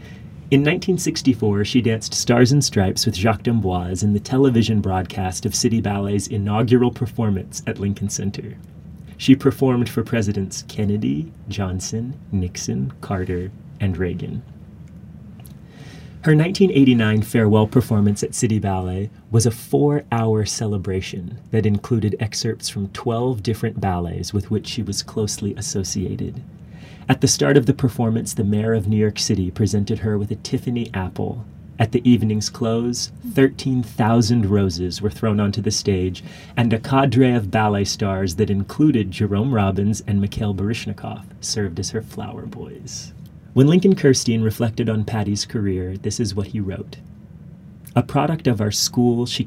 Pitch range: 100-125 Hz